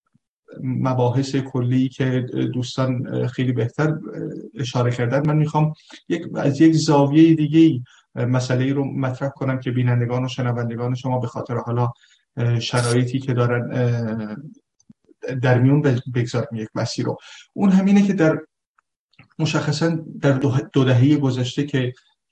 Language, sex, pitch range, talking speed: Persian, male, 125-150 Hz, 120 wpm